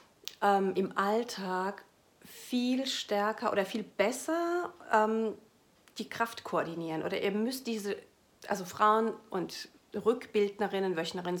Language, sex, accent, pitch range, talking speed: German, female, German, 180-225 Hz, 105 wpm